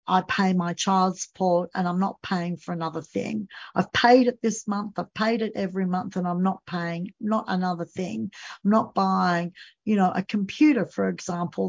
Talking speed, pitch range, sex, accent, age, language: 195 wpm, 180-215 Hz, female, Australian, 50-69, English